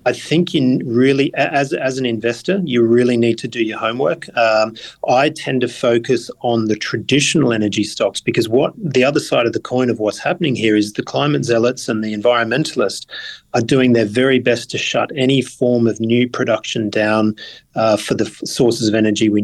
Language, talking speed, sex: English, 200 wpm, male